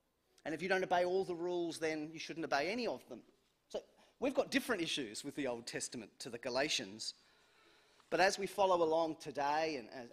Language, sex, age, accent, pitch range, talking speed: English, male, 30-49, Australian, 150-200 Hz, 205 wpm